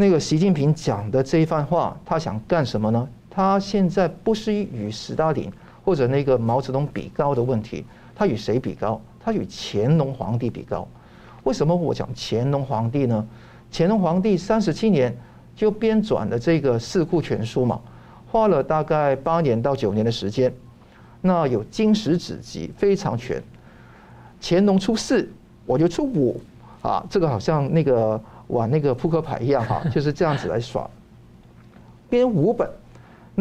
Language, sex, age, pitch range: Chinese, male, 50-69, 125-195 Hz